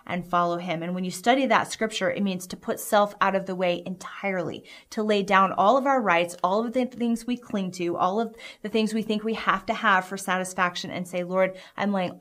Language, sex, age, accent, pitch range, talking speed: English, female, 30-49, American, 180-220 Hz, 245 wpm